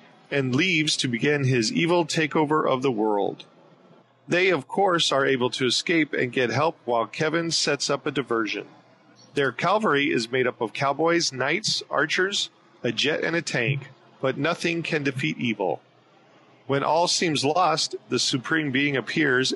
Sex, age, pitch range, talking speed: male, 40-59, 130-165 Hz, 165 wpm